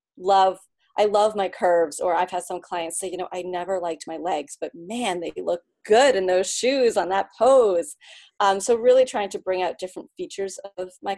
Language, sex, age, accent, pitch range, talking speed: English, female, 30-49, American, 170-210 Hz, 215 wpm